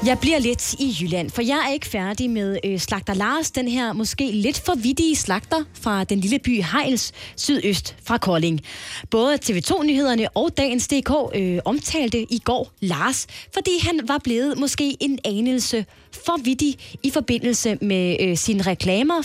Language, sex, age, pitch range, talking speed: Danish, female, 20-39, 195-275 Hz, 160 wpm